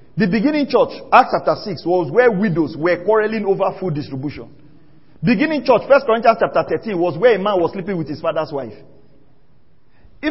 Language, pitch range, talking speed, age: English, 205-285 Hz, 180 wpm, 40-59